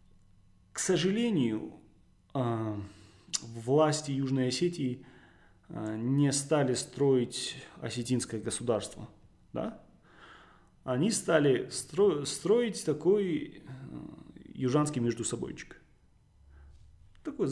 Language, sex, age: Russian, male, 30-49